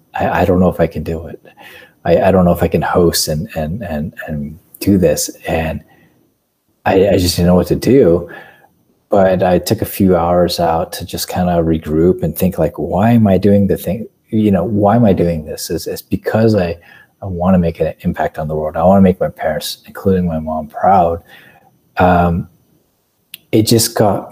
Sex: male